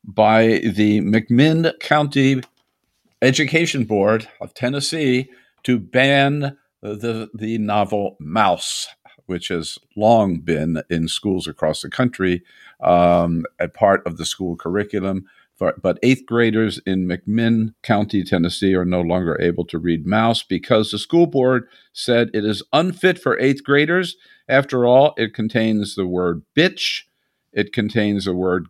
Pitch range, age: 90-125 Hz, 50-69